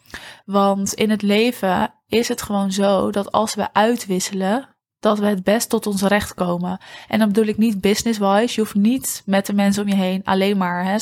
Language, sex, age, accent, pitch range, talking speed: Dutch, female, 20-39, Dutch, 195-220 Hz, 205 wpm